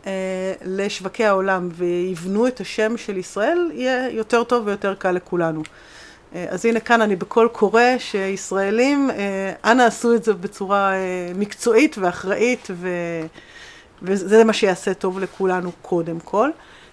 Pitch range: 185-230 Hz